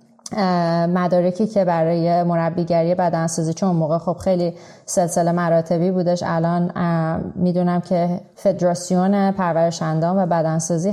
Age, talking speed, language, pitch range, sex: 20-39, 110 wpm, Persian, 170-205 Hz, female